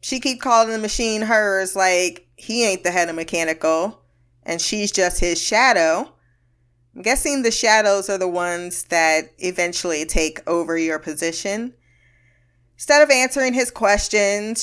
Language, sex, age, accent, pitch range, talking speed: English, female, 20-39, American, 165-230 Hz, 150 wpm